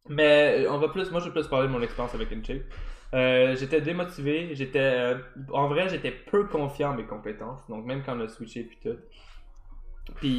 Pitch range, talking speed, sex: 115-150 Hz, 215 wpm, male